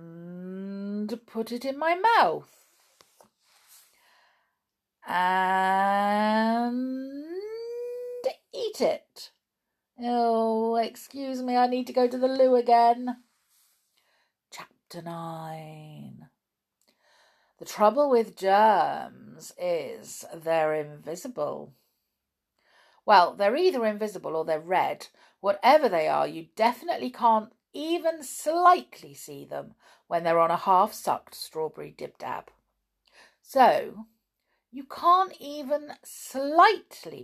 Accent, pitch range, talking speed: British, 190-305 Hz, 90 wpm